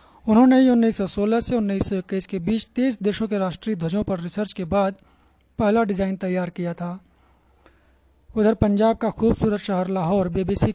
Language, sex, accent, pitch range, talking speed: Hindi, male, native, 180-215 Hz, 145 wpm